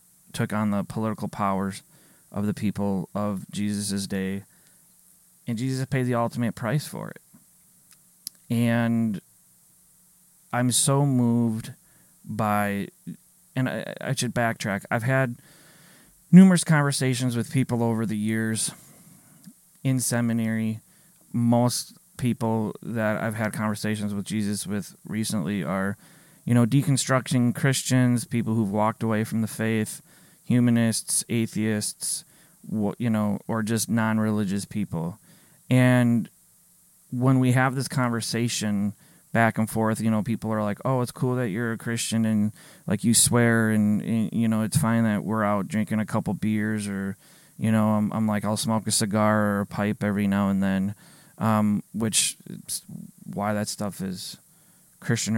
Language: English